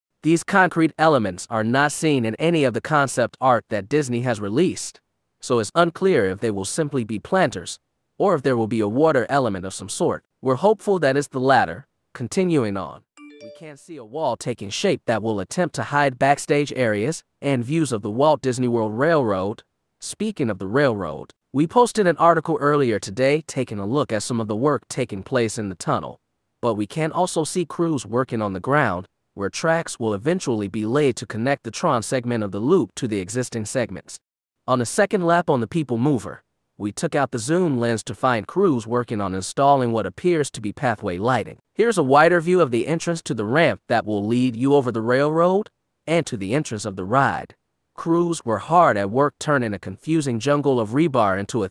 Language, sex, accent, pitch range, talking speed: English, male, American, 110-155 Hz, 210 wpm